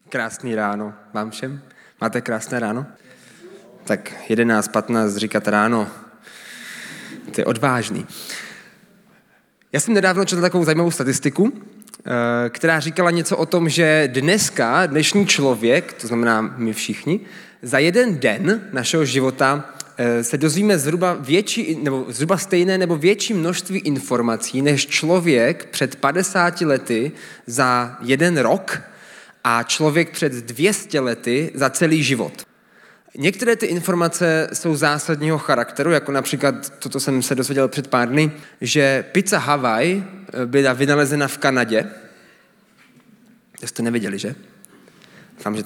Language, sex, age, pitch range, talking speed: Czech, male, 20-39, 125-170 Hz, 125 wpm